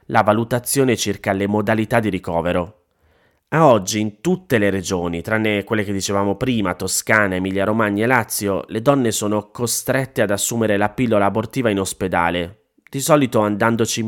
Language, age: Italian, 30-49